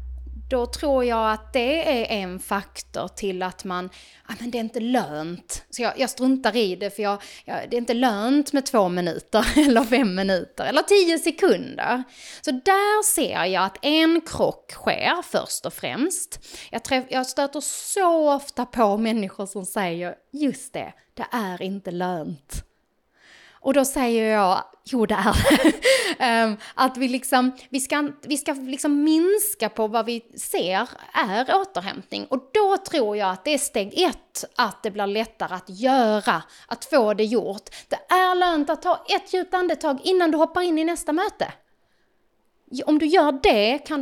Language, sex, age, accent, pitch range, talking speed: Swedish, female, 20-39, native, 210-305 Hz, 170 wpm